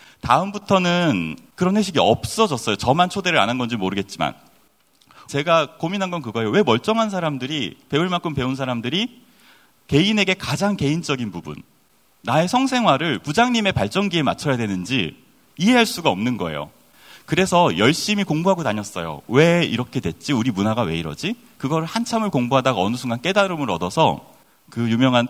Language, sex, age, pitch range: Korean, male, 30-49, 110-185 Hz